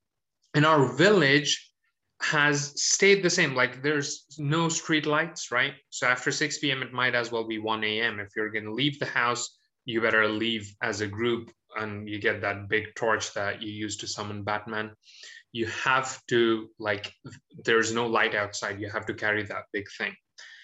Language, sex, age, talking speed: English, male, 20-39, 185 wpm